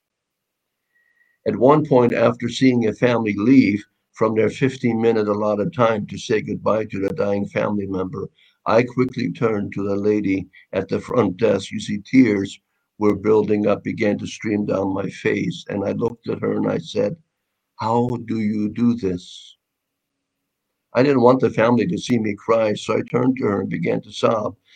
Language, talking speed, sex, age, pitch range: English, 180 wpm, male, 50-69, 105-125 Hz